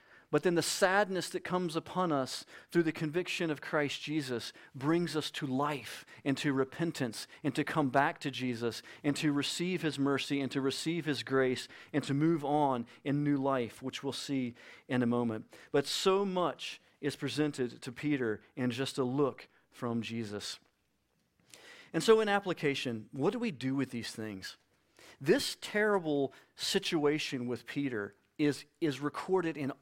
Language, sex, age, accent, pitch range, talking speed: English, male, 40-59, American, 130-170 Hz, 165 wpm